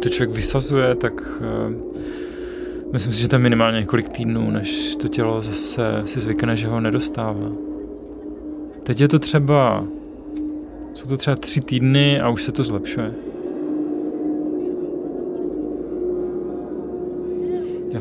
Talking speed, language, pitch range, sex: 125 wpm, Czech, 115-145 Hz, male